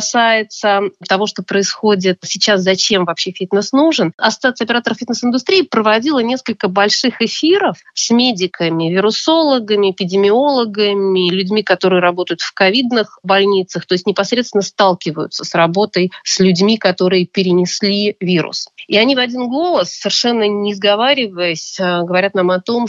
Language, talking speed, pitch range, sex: Russian, 130 wpm, 180-215 Hz, female